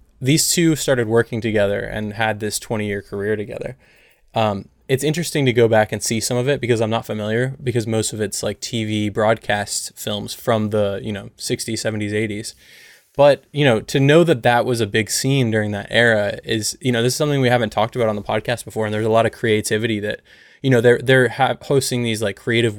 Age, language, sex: 20-39, English, male